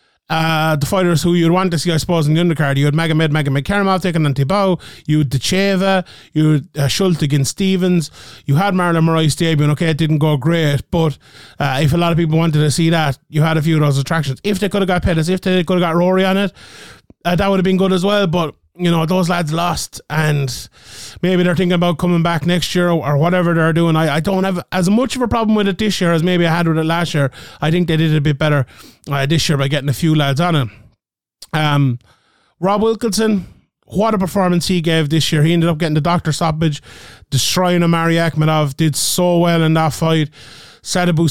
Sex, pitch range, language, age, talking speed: male, 155-185 Hz, English, 30-49, 240 wpm